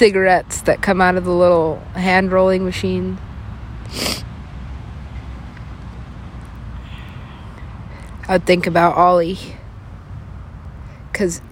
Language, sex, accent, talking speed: English, female, American, 80 wpm